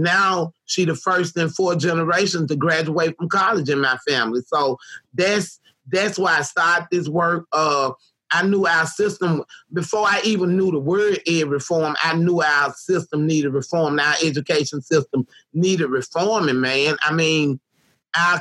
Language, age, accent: English, 30-49, American